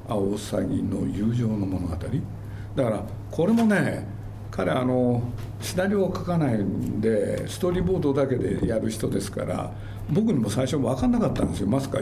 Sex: male